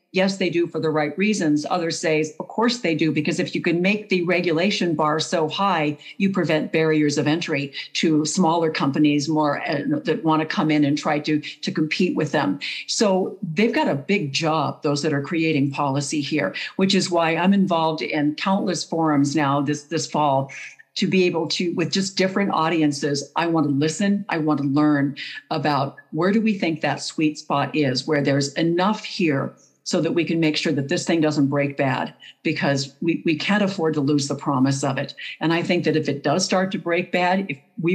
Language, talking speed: English, 210 wpm